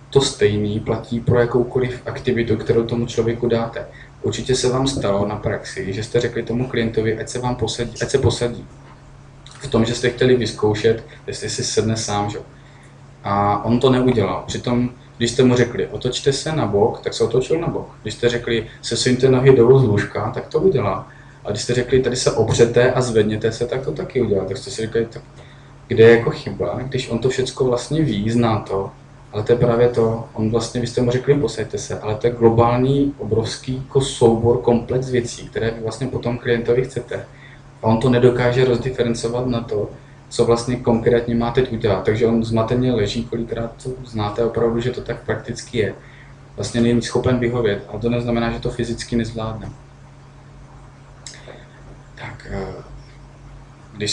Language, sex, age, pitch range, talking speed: Czech, male, 20-39, 115-130 Hz, 180 wpm